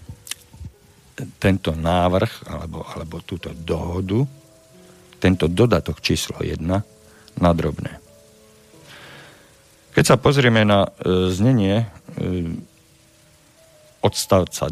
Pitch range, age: 85-110 Hz, 50-69